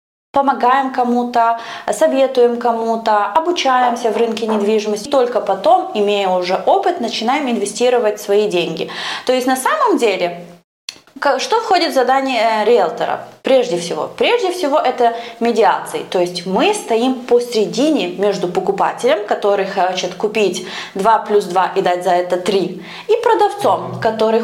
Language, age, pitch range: English, 20-39, 205-270 Hz